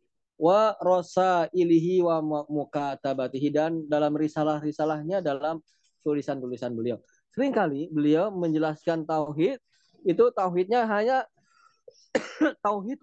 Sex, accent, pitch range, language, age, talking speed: male, native, 155-210 Hz, Indonesian, 20-39, 85 wpm